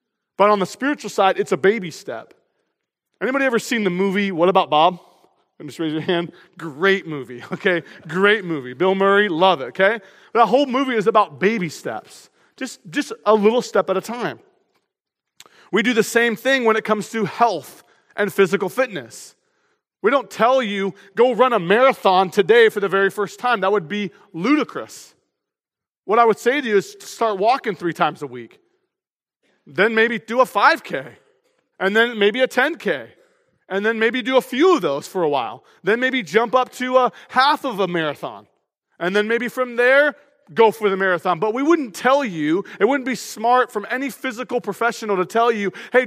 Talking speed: 195 wpm